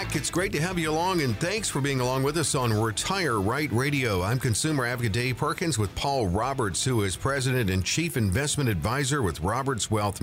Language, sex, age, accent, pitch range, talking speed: English, male, 50-69, American, 100-135 Hz, 205 wpm